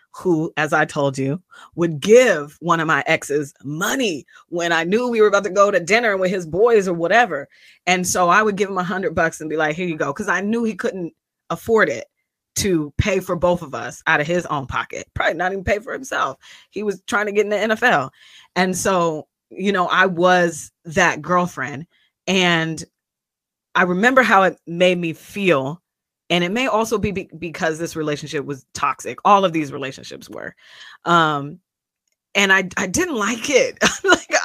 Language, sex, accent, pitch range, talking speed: English, female, American, 165-215 Hz, 200 wpm